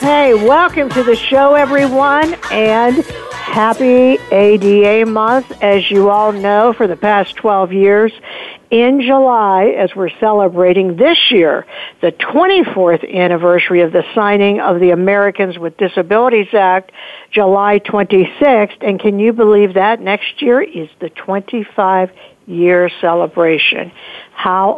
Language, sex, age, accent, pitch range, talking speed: English, female, 60-79, American, 190-240 Hz, 130 wpm